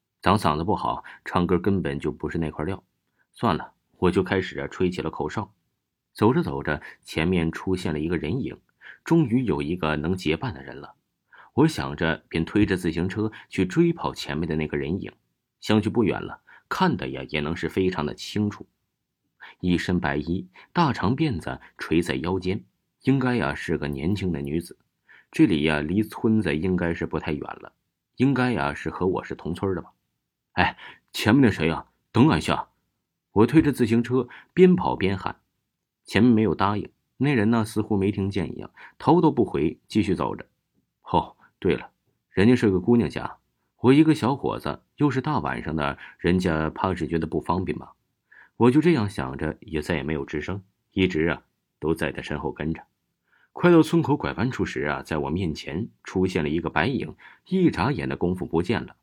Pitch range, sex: 80-110 Hz, male